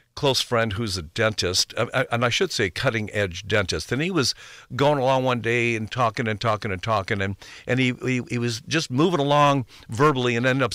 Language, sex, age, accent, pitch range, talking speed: English, male, 60-79, American, 110-145 Hz, 205 wpm